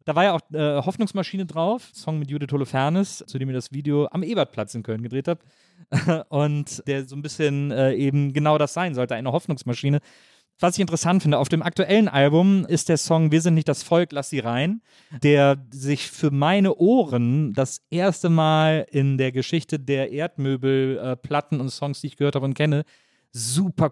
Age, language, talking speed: 40-59, German, 195 wpm